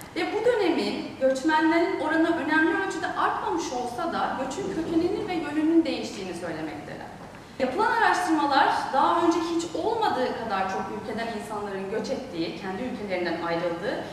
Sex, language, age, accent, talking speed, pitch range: female, Turkish, 30-49, native, 130 wpm, 245-325 Hz